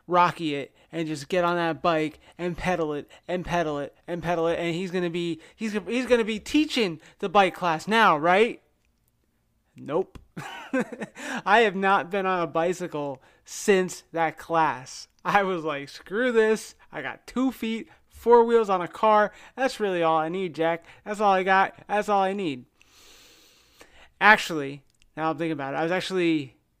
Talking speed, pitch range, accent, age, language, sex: 185 wpm, 150-190 Hz, American, 30-49, English, male